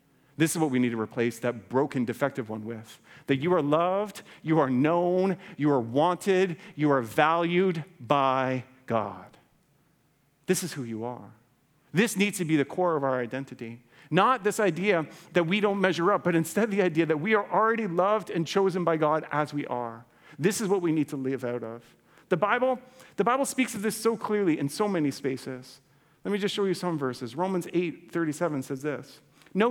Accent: American